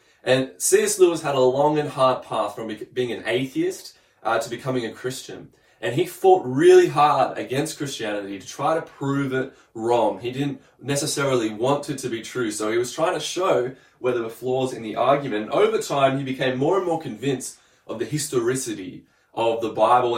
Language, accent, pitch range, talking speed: English, Australian, 120-155 Hz, 200 wpm